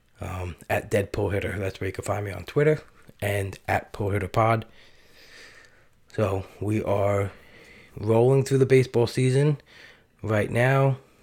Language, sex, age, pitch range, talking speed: English, male, 20-39, 100-110 Hz, 130 wpm